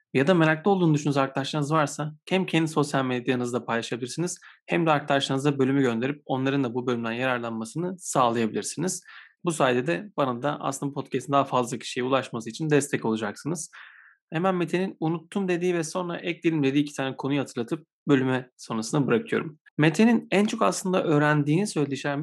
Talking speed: 155 wpm